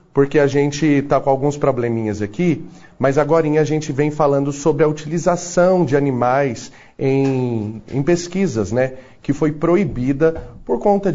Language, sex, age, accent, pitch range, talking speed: Portuguese, male, 30-49, Brazilian, 125-155 Hz, 150 wpm